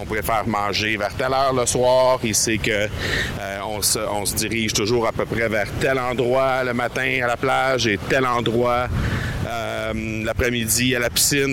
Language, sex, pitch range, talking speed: French, male, 110-135 Hz, 185 wpm